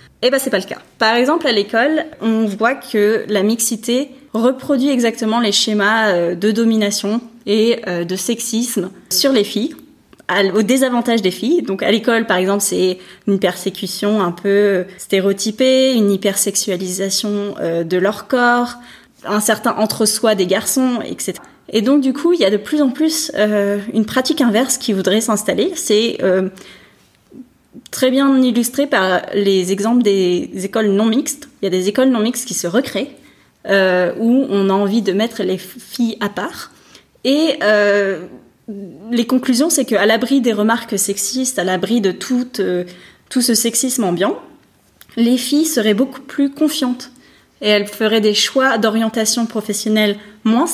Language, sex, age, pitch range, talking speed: French, female, 20-39, 200-250 Hz, 160 wpm